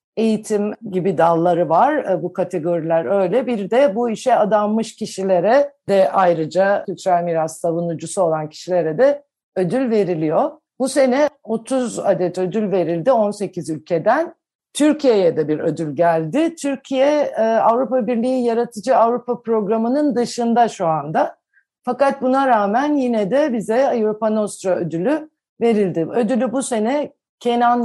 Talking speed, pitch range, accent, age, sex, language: 125 wpm, 185-250 Hz, native, 50-69, female, Turkish